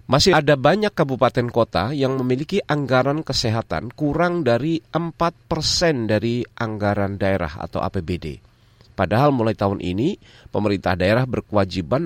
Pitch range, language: 100-140 Hz, Indonesian